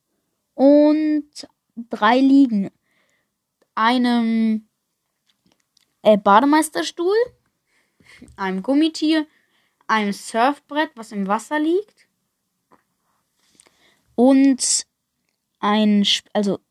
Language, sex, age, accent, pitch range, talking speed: German, female, 20-39, German, 210-280 Hz, 55 wpm